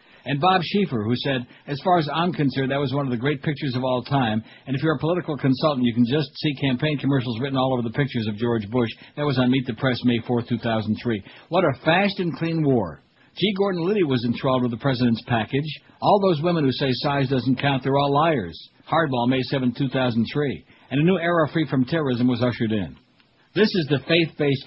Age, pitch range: 60-79, 125-150 Hz